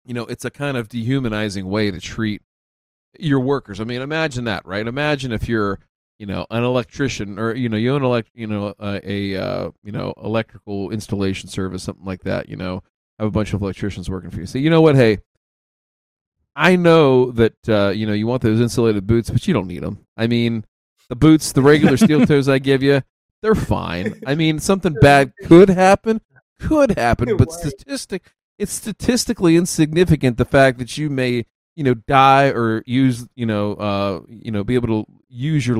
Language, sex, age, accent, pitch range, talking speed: English, male, 40-59, American, 100-135 Hz, 200 wpm